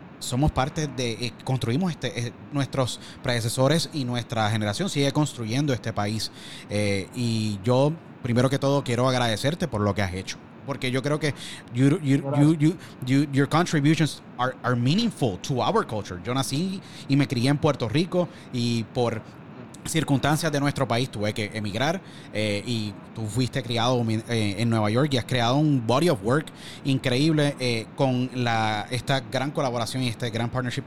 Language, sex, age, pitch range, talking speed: Spanish, male, 30-49, 115-145 Hz, 175 wpm